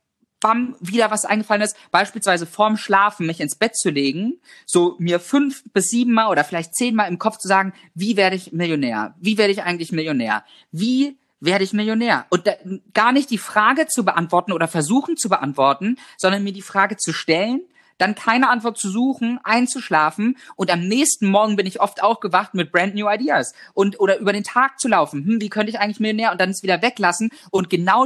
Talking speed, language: 205 wpm, German